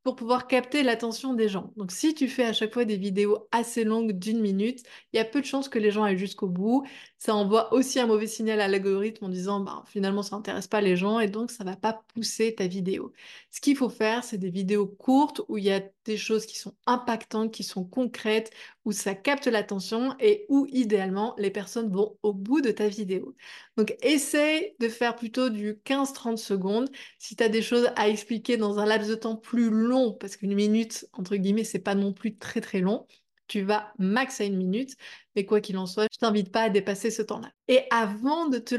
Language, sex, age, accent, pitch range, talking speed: French, female, 20-39, French, 205-245 Hz, 230 wpm